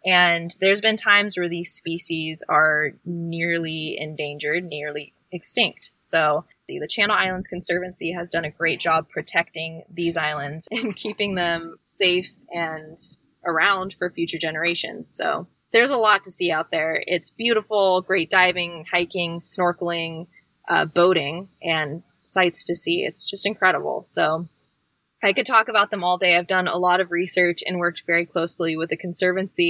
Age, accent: 20-39, American